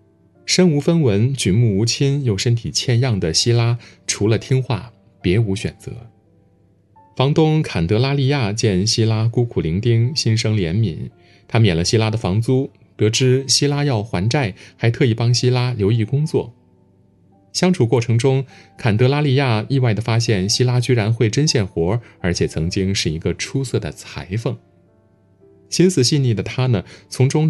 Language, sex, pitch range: Chinese, male, 95-130 Hz